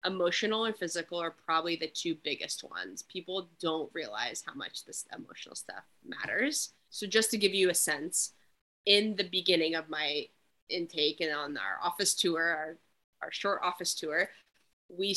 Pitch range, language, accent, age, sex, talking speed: 165-200 Hz, English, American, 20-39, female, 165 wpm